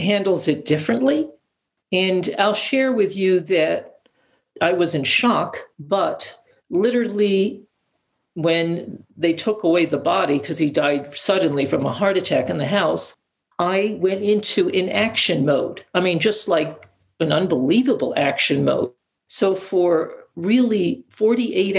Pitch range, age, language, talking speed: 155-210 Hz, 60-79, English, 140 wpm